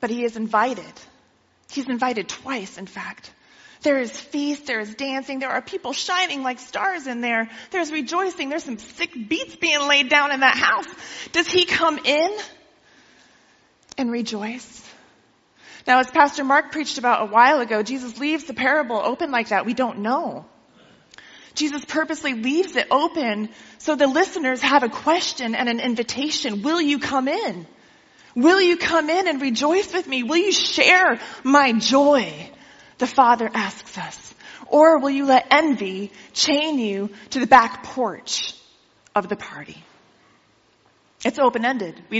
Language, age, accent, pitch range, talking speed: English, 30-49, American, 240-310 Hz, 160 wpm